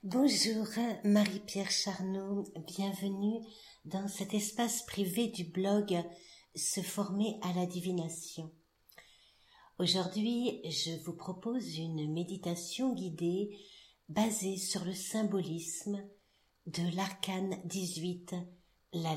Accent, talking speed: French, 95 wpm